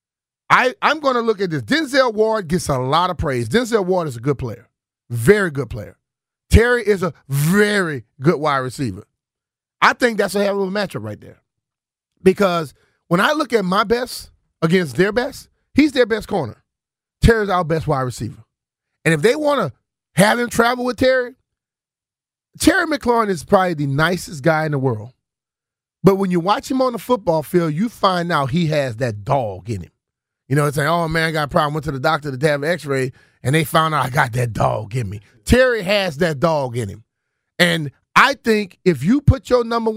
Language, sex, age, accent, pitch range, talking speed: English, male, 30-49, American, 140-210 Hz, 205 wpm